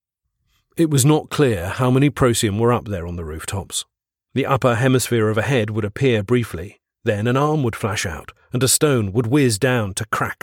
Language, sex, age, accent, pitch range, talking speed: English, male, 40-59, British, 105-130 Hz, 205 wpm